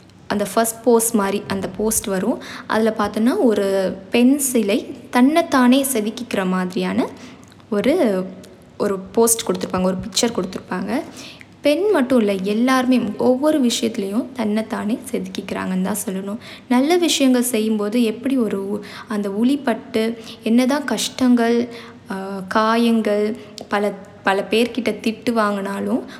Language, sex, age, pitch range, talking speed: Tamil, female, 20-39, 210-255 Hz, 110 wpm